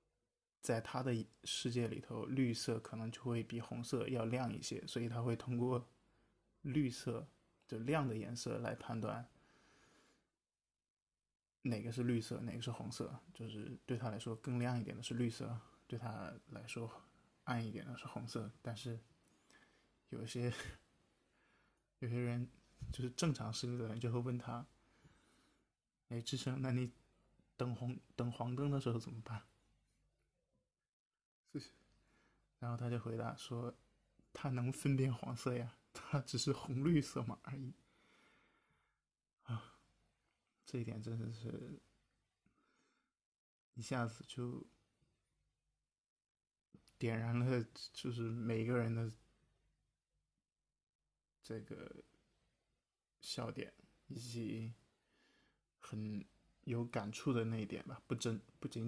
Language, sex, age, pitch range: Chinese, male, 20-39, 115-125 Hz